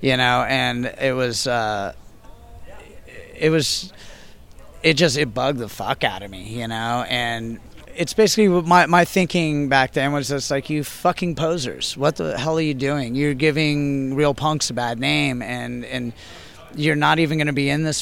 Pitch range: 120-150 Hz